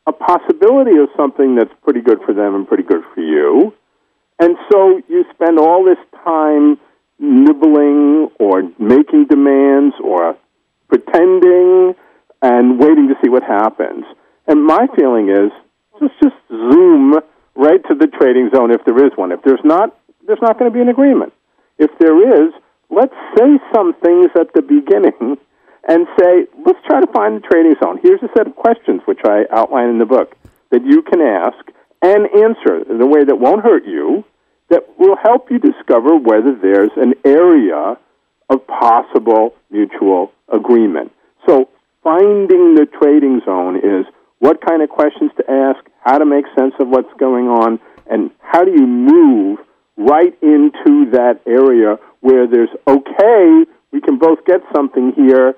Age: 50-69